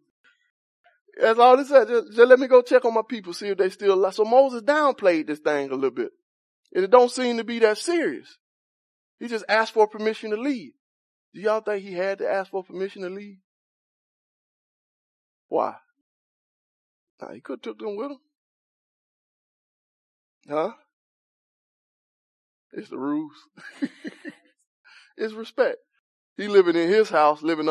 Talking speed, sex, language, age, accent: 160 wpm, male, English, 20-39, American